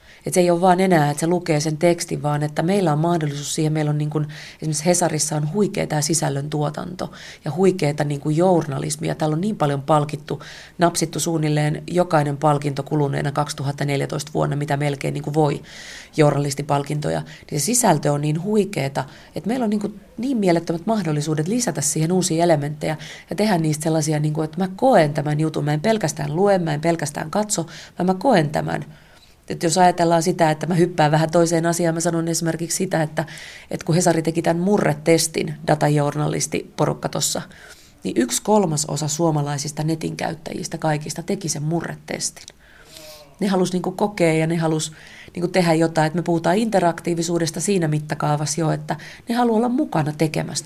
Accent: native